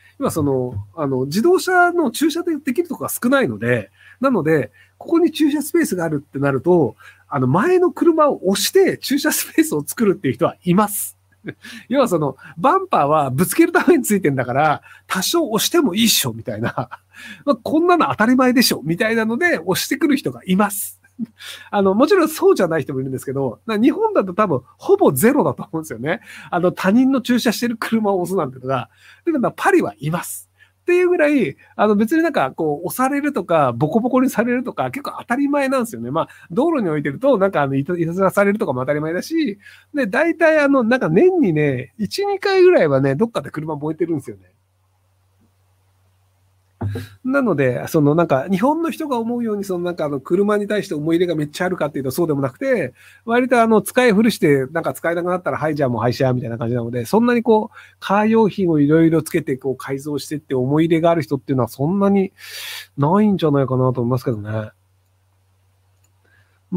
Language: Japanese